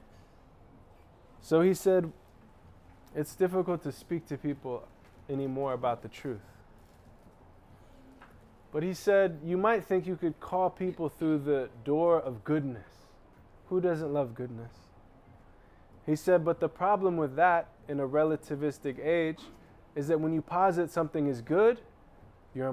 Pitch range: 115-155 Hz